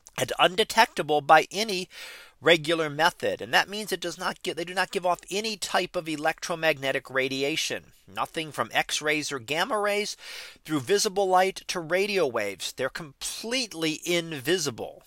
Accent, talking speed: American, 145 wpm